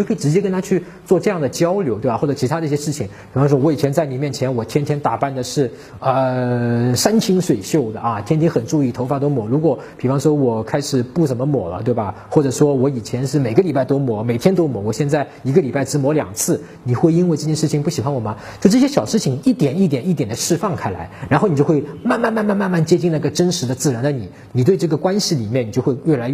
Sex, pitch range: male, 115-170 Hz